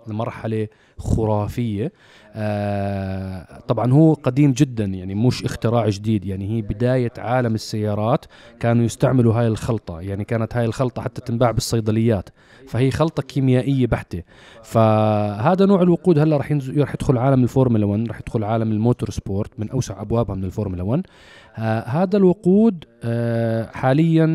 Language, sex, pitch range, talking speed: Arabic, male, 110-135 Hz, 135 wpm